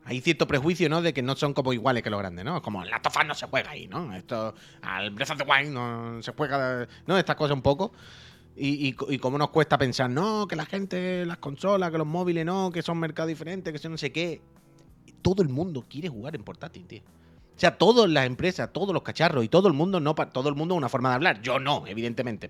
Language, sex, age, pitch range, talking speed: Spanish, male, 30-49, 125-170 Hz, 255 wpm